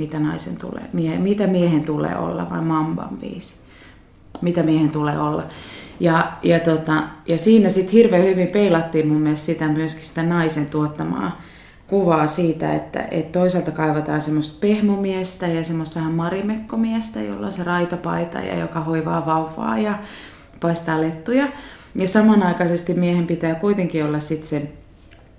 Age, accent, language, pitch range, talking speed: 30-49, native, Finnish, 155-185 Hz, 140 wpm